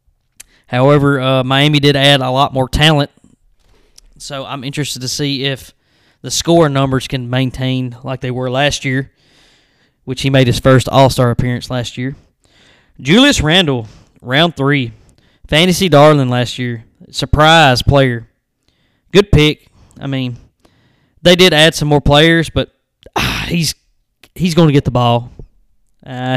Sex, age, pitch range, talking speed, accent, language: male, 20-39, 125-150 Hz, 145 wpm, American, English